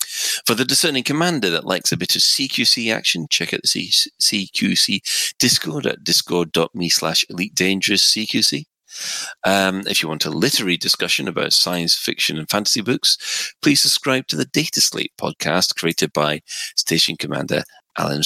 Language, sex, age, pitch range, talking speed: English, male, 30-49, 80-110 Hz, 150 wpm